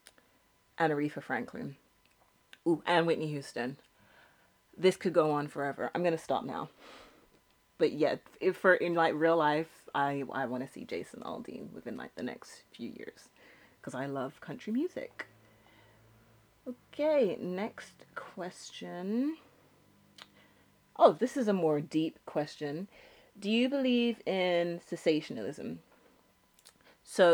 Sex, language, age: female, English, 30-49